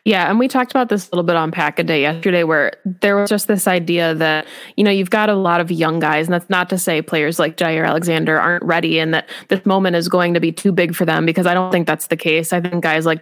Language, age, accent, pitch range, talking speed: English, 20-39, American, 165-185 Hz, 290 wpm